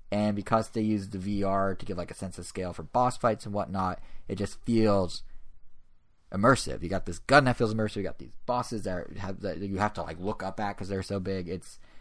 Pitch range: 90-115 Hz